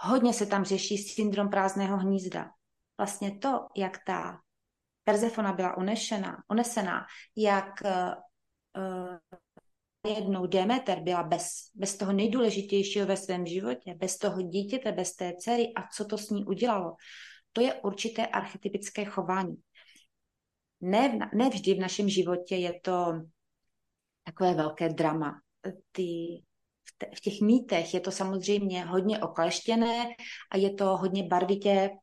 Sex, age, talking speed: female, 30-49, 125 wpm